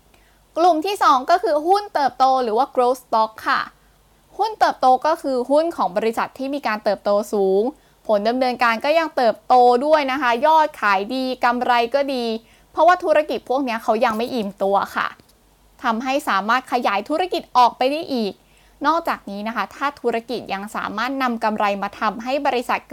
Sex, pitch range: female, 220-295 Hz